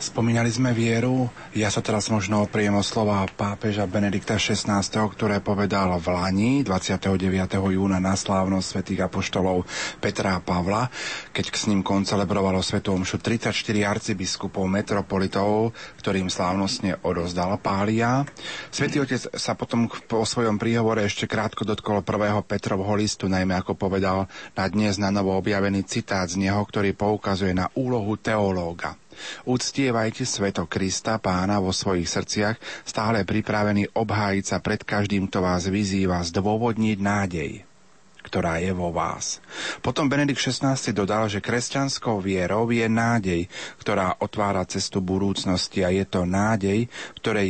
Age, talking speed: 40-59, 135 wpm